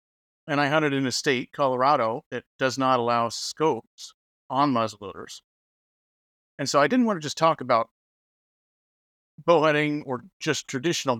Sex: male